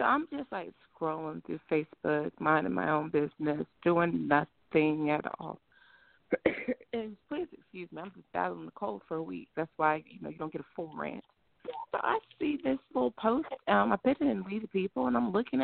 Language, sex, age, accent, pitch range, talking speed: English, female, 30-49, American, 155-235 Hz, 205 wpm